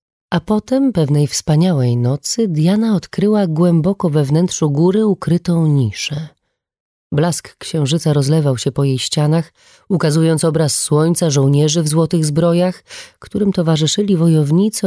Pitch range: 140-180 Hz